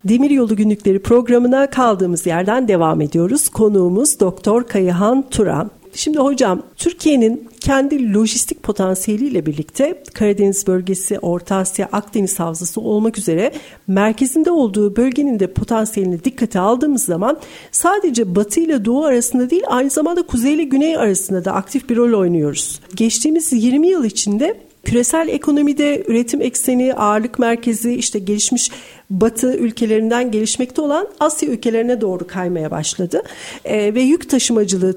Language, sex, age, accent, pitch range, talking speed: Turkish, female, 50-69, native, 205-290 Hz, 130 wpm